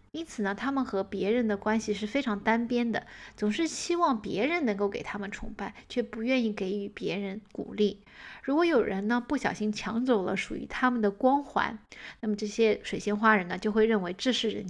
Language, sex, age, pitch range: Chinese, female, 20-39, 200-245 Hz